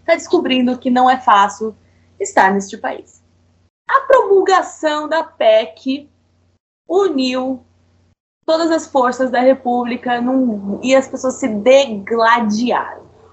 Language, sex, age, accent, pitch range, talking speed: Portuguese, female, 20-39, Brazilian, 220-315 Hz, 115 wpm